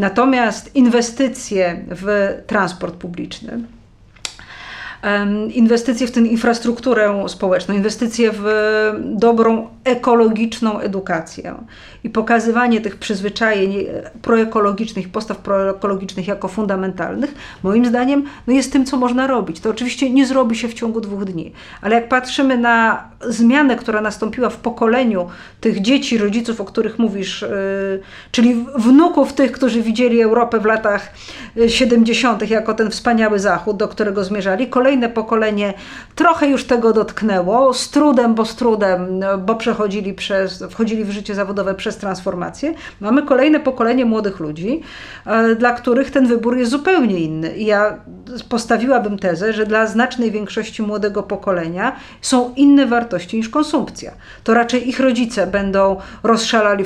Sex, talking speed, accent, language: female, 130 wpm, native, Polish